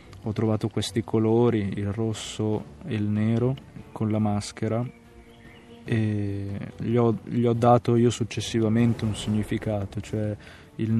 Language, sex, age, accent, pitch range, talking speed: Italian, male, 20-39, native, 105-120 Hz, 125 wpm